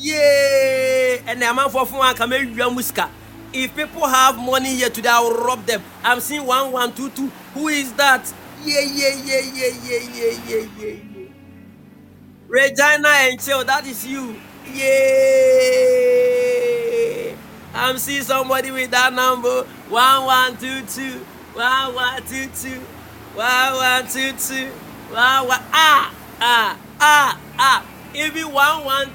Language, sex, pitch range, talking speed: English, male, 245-280 Hz, 150 wpm